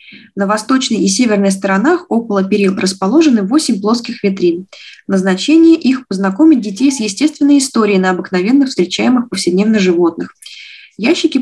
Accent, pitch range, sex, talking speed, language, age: native, 195-265 Hz, female, 125 wpm, Russian, 20-39